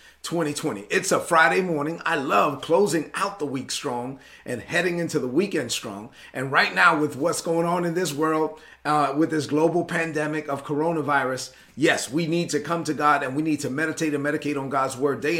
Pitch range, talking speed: 140-170 Hz, 205 wpm